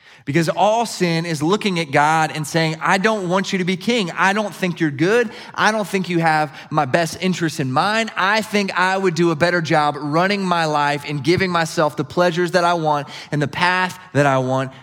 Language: English